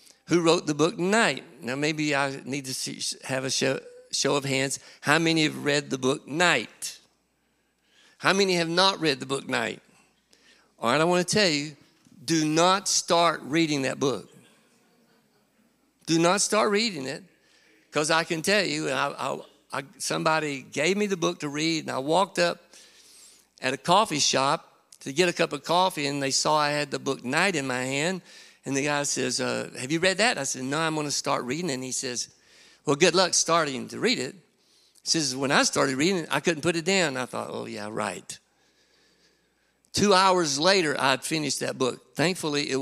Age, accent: 60-79, American